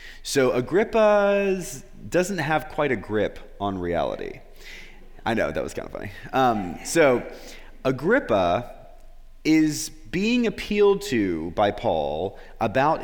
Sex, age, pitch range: male, 30-49, 110-165 Hz